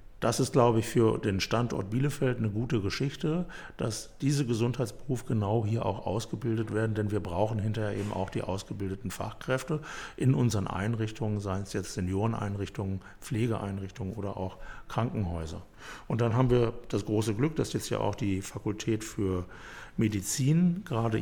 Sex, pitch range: male, 100-125 Hz